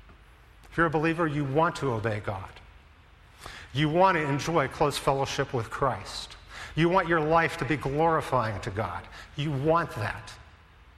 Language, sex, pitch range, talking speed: English, male, 110-150 Hz, 160 wpm